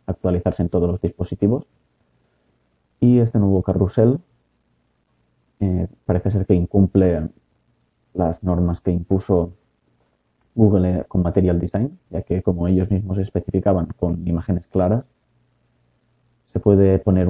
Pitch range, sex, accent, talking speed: 90-105 Hz, male, Spanish, 120 wpm